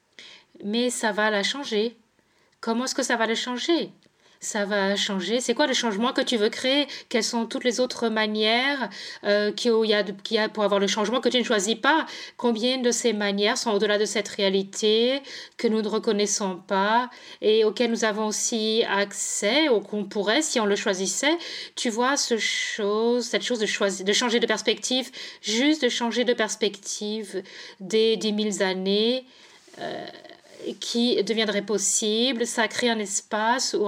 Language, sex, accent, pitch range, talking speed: English, female, French, 210-245 Hz, 175 wpm